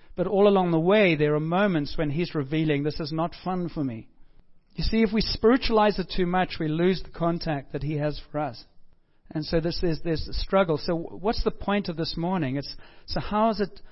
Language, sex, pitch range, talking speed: English, male, 150-190 Hz, 230 wpm